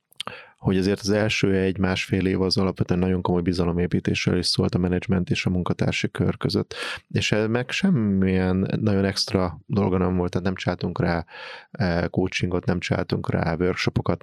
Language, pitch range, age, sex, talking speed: Hungarian, 90-100 Hz, 30-49, male, 155 wpm